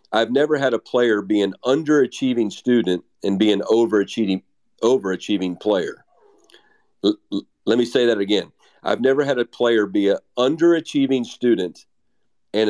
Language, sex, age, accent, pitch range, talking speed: English, male, 50-69, American, 110-180 Hz, 150 wpm